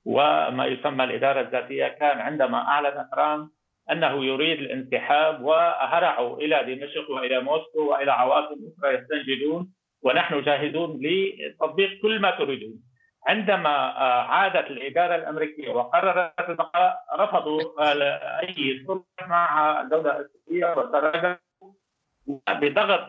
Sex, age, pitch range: male, 50-69, 155-205 Hz